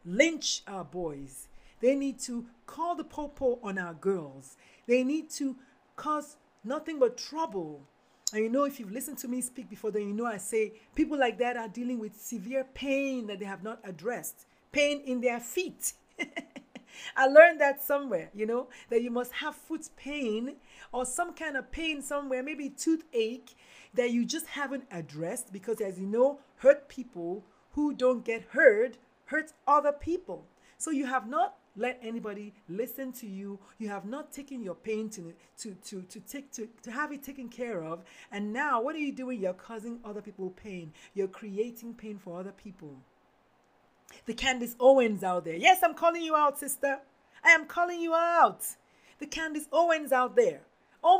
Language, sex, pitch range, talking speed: English, female, 215-295 Hz, 185 wpm